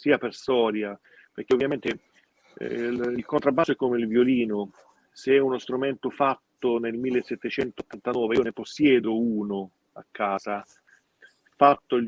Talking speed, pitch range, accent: 140 wpm, 110-135 Hz, native